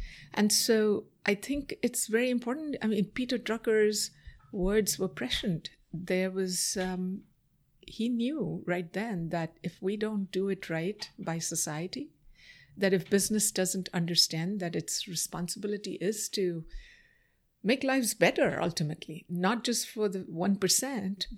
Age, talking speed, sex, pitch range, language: 60-79, 140 wpm, female, 170-220 Hz, English